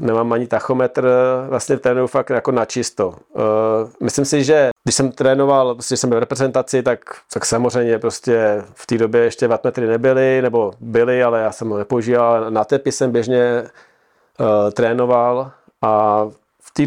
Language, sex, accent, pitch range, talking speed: Czech, male, native, 115-135 Hz, 165 wpm